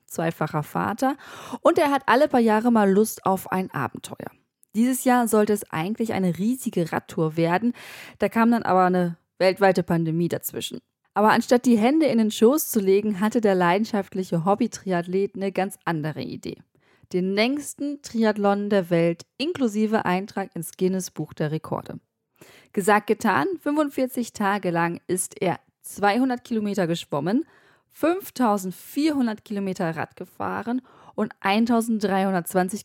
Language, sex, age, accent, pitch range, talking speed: German, female, 20-39, German, 180-230 Hz, 135 wpm